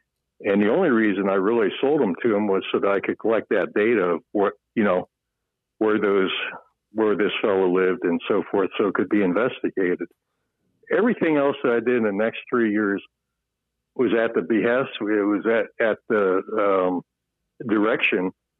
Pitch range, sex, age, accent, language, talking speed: 95-120 Hz, male, 60-79, American, English, 185 wpm